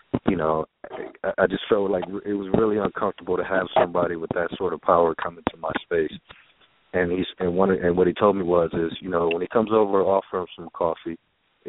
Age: 40-59